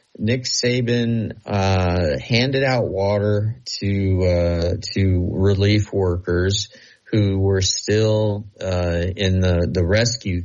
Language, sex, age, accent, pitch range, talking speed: English, male, 30-49, American, 90-110 Hz, 110 wpm